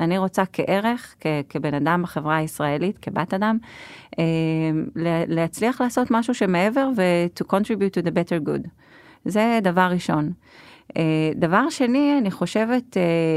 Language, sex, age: Hebrew, female, 30-49